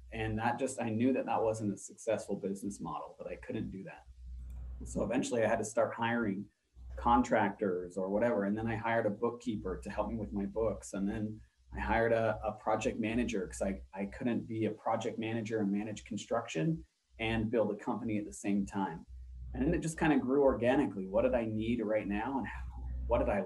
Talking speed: 215 wpm